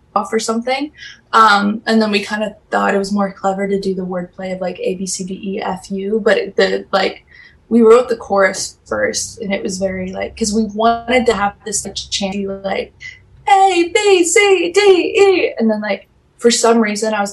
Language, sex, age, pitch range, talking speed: English, female, 20-39, 195-255 Hz, 215 wpm